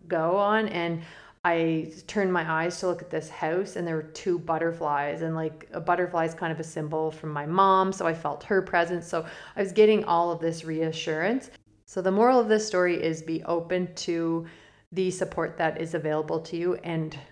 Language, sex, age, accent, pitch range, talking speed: English, female, 30-49, American, 155-175 Hz, 210 wpm